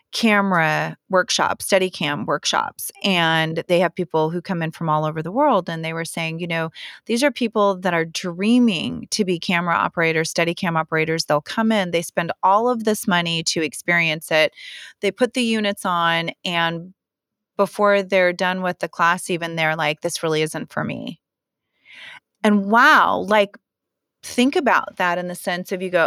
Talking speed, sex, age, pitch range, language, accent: 185 wpm, female, 30-49, 165-200 Hz, English, American